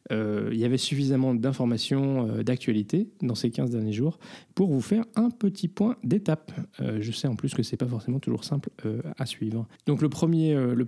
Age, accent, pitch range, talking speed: 20-39, French, 115-145 Hz, 220 wpm